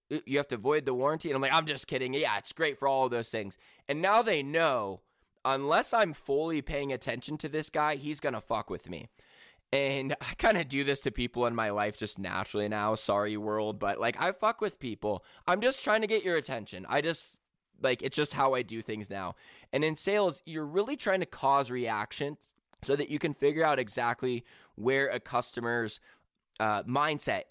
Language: English